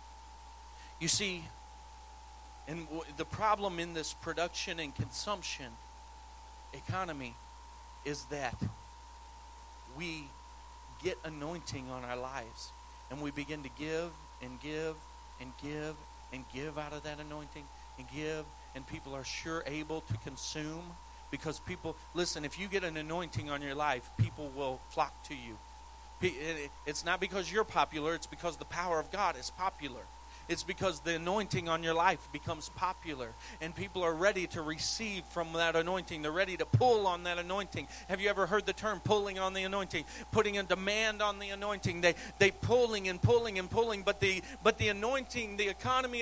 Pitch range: 160-225 Hz